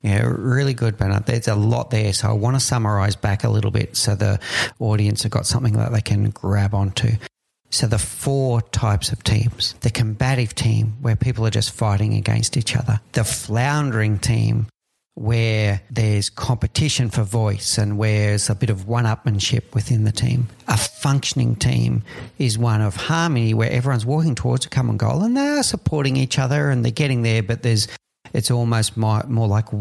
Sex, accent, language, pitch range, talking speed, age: male, Australian, English, 110-130 Hz, 185 wpm, 40-59